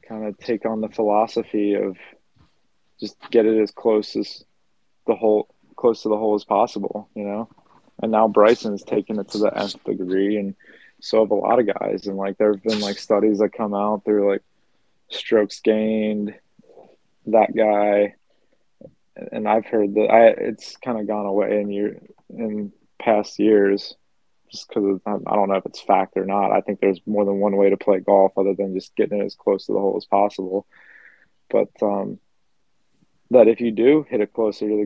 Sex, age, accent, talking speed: male, 20-39, American, 195 wpm